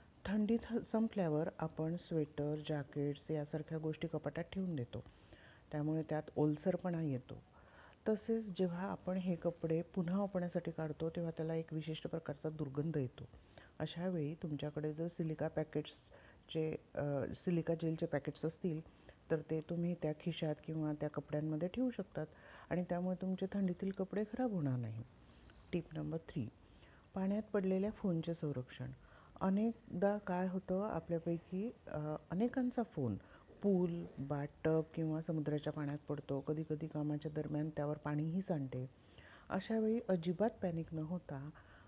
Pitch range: 150-185 Hz